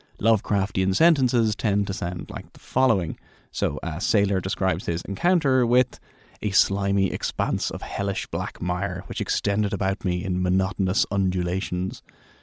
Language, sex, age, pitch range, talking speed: English, male, 30-49, 95-125 Hz, 140 wpm